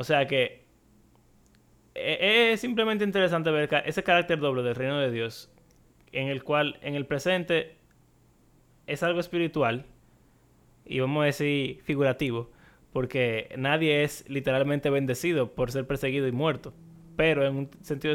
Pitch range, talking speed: 130-165 Hz, 140 wpm